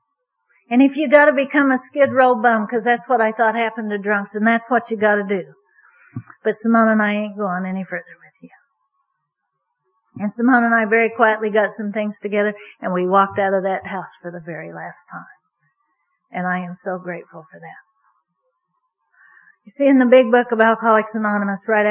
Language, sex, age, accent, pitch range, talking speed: English, female, 50-69, American, 205-275 Hz, 200 wpm